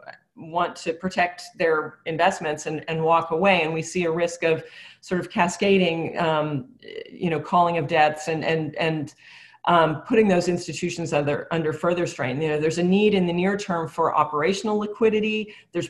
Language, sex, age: English, female, 40-59